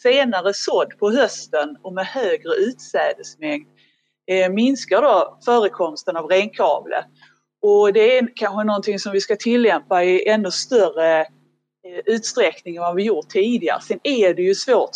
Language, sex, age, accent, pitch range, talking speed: Swedish, female, 30-49, native, 185-280 Hz, 145 wpm